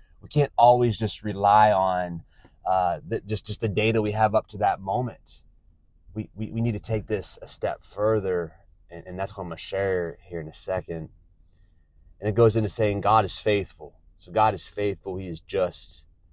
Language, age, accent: English, 20-39, American